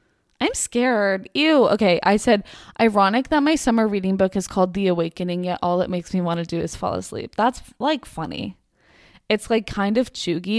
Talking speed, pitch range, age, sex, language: 200 wpm, 180-225 Hz, 20-39, female, English